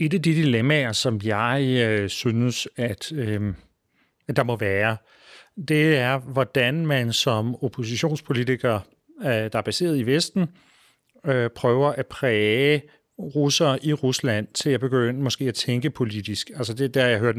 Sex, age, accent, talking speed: male, 40-59, native, 160 wpm